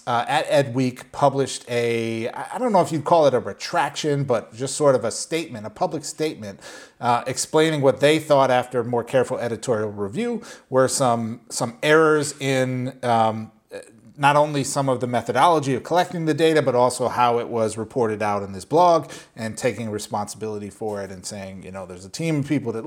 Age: 30-49